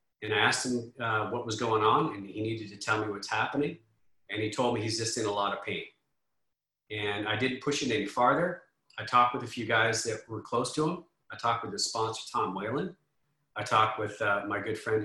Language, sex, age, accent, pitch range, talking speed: English, male, 40-59, American, 105-120 Hz, 240 wpm